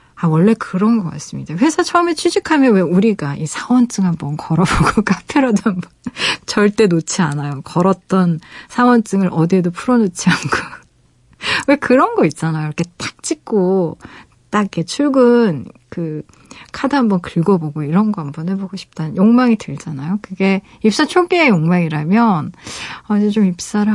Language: Korean